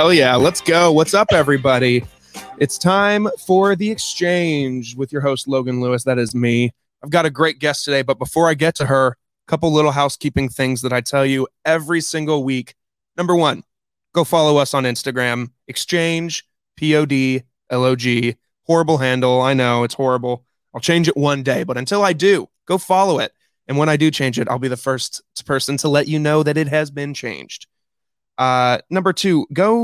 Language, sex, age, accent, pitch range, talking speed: English, male, 20-39, American, 130-170 Hz, 190 wpm